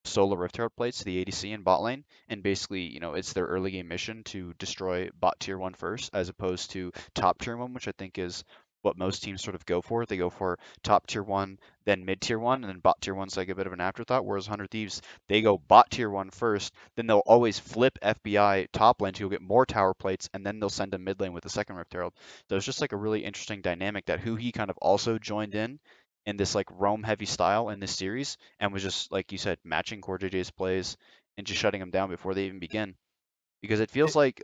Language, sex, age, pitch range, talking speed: English, male, 20-39, 95-110 Hz, 245 wpm